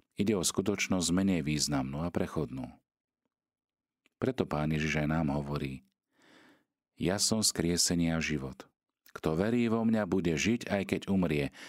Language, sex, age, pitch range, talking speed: Slovak, male, 40-59, 75-95 Hz, 135 wpm